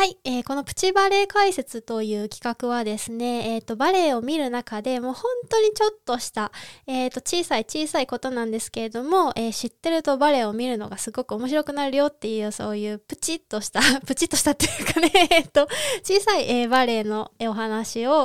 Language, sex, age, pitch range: Japanese, female, 20-39, 225-320 Hz